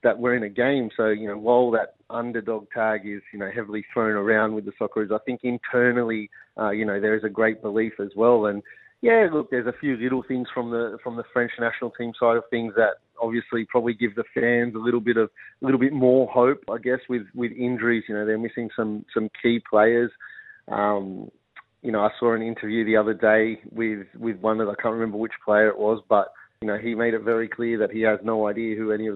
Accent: Australian